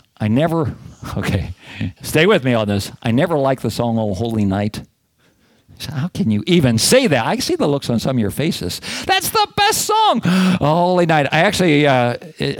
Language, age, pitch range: English, 50-69, 115-160 Hz